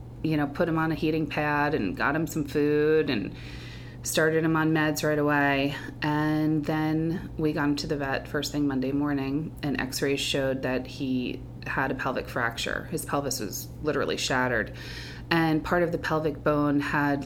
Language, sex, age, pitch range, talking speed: English, female, 30-49, 130-155 Hz, 185 wpm